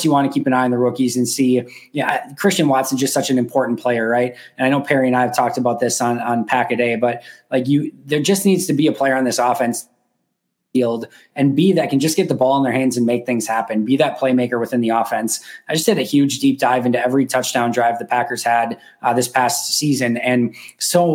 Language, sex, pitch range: English, male, 120-140 Hz